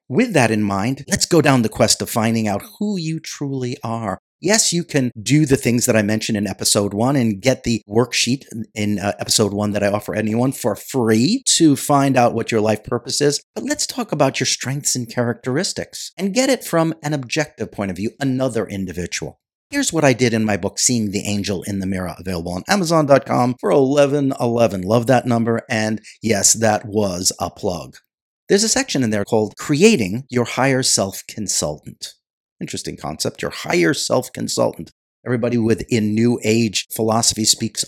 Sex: male